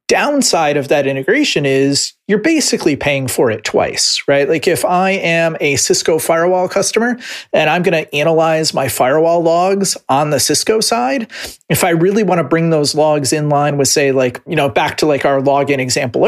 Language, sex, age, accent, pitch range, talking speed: English, male, 30-49, American, 135-165 Hz, 195 wpm